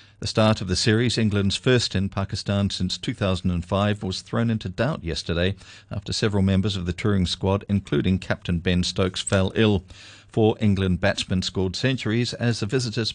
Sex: male